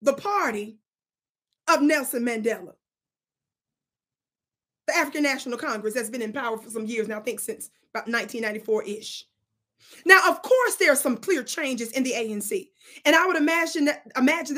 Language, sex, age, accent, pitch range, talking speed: English, female, 30-49, American, 265-345 Hz, 150 wpm